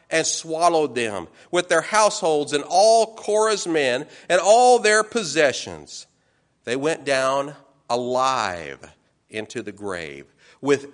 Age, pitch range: 50-69, 140-220 Hz